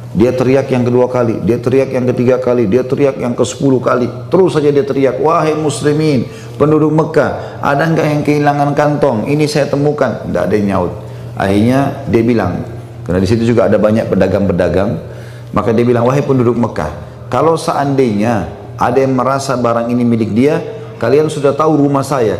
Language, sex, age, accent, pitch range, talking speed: Indonesian, male, 40-59, native, 120-145 Hz, 175 wpm